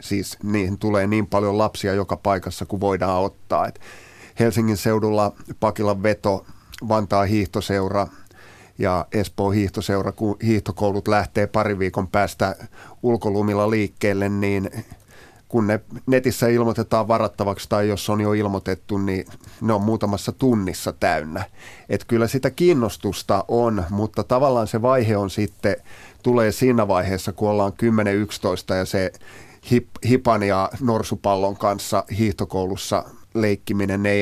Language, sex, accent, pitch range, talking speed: Finnish, male, native, 100-115 Hz, 130 wpm